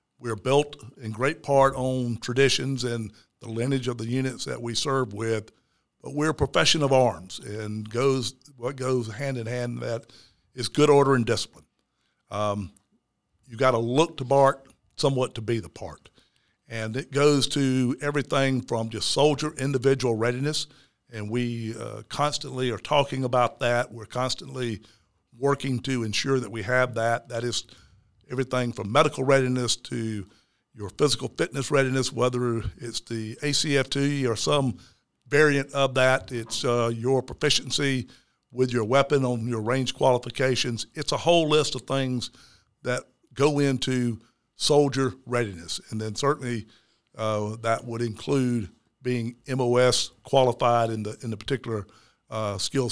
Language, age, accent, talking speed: English, 50-69, American, 150 wpm